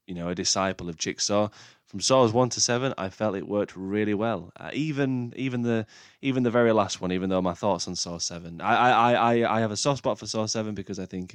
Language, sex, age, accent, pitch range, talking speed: English, male, 10-29, British, 90-110 Hz, 250 wpm